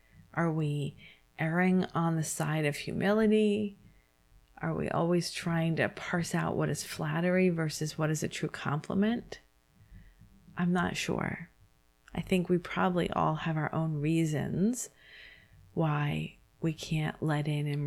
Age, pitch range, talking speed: 40-59, 145-180 Hz, 140 wpm